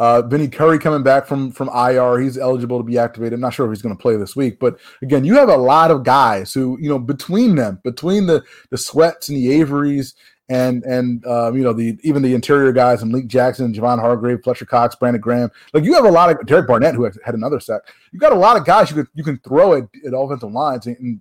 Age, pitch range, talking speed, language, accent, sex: 20-39, 125-155 Hz, 260 wpm, English, American, male